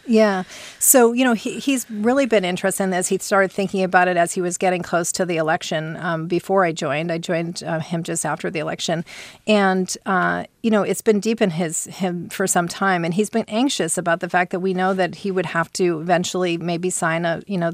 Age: 40-59